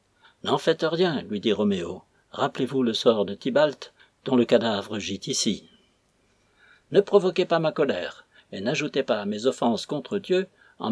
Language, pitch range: French, 120-170 Hz